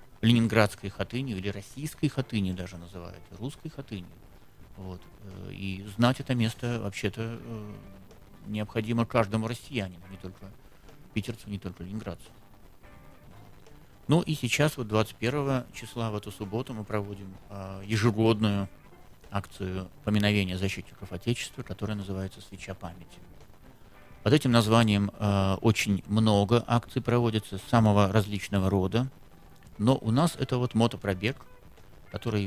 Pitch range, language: 95-115 Hz, Russian